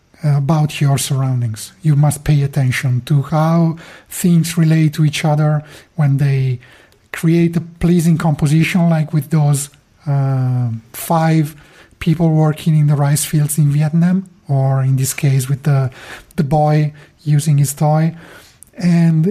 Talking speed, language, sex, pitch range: 140 wpm, English, male, 140-165 Hz